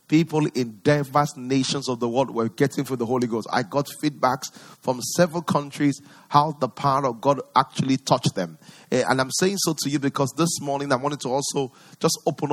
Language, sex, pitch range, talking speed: English, male, 135-165 Hz, 200 wpm